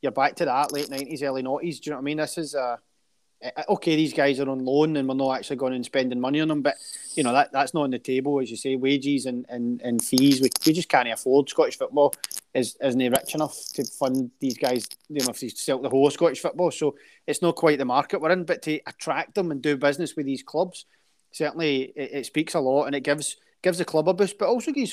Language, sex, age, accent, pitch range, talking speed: English, male, 20-39, British, 135-170 Hz, 265 wpm